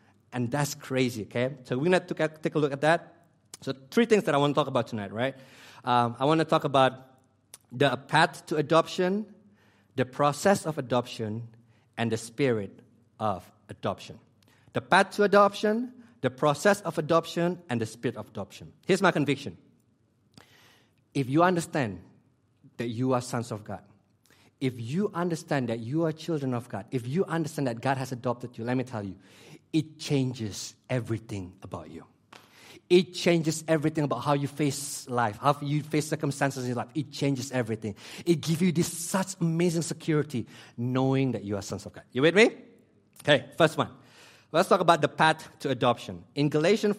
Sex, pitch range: male, 120-160 Hz